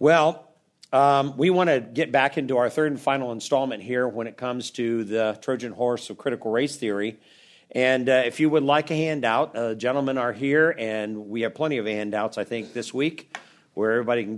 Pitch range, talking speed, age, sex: 120-155 Hz, 210 wpm, 50-69, male